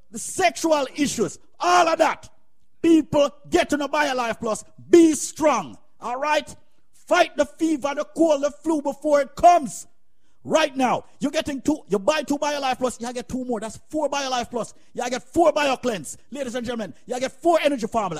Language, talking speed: English, 200 wpm